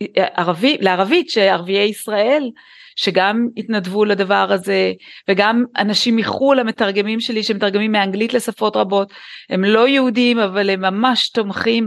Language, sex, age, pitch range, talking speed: Hebrew, female, 30-49, 185-230 Hz, 120 wpm